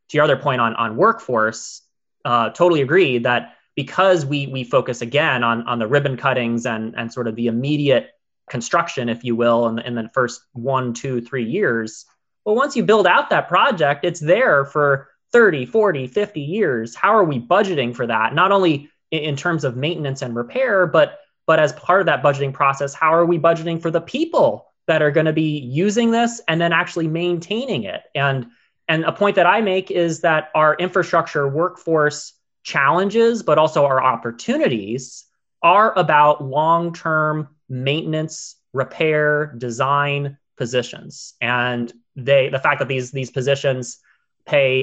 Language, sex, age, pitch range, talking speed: English, male, 20-39, 125-165 Hz, 170 wpm